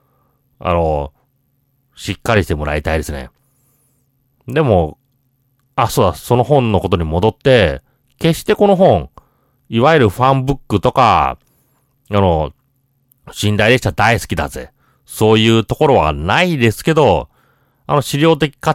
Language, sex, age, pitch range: Japanese, male, 40-59, 100-135 Hz